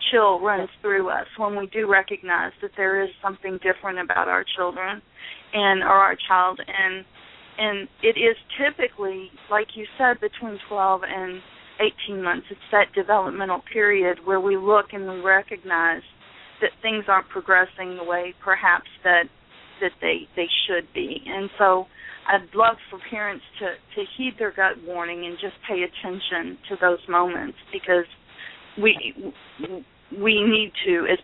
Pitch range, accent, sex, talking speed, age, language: 185-220 Hz, American, female, 155 wpm, 40-59, English